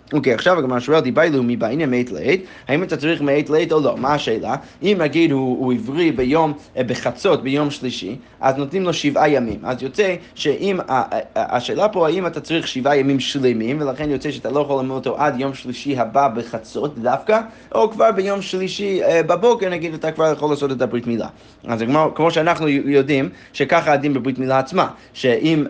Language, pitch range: Hebrew, 130-155 Hz